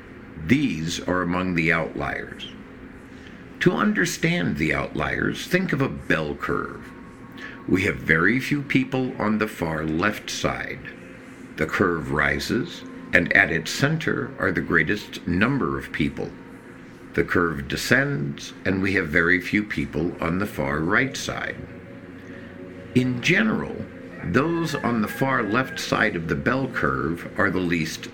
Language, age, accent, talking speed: English, 60-79, American, 140 wpm